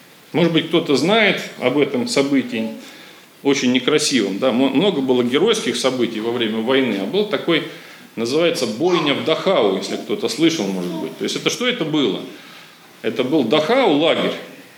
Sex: male